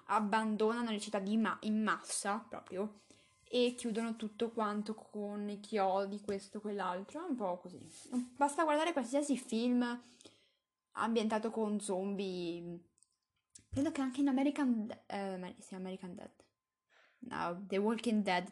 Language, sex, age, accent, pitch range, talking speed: English, female, 10-29, Italian, 200-255 Hz, 135 wpm